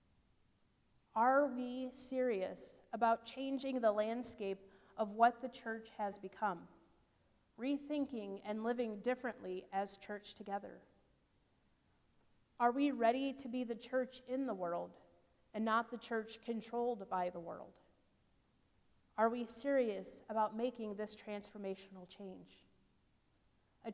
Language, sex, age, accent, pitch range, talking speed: English, female, 30-49, American, 210-245 Hz, 120 wpm